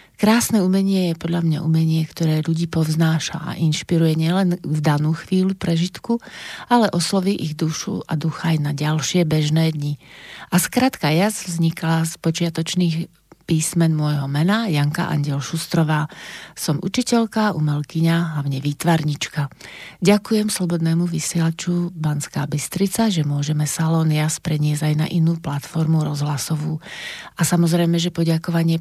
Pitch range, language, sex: 155-180 Hz, Slovak, female